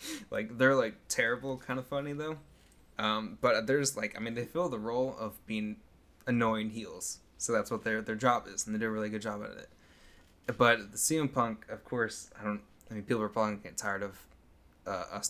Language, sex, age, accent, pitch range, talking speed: English, male, 20-39, American, 105-130 Hz, 230 wpm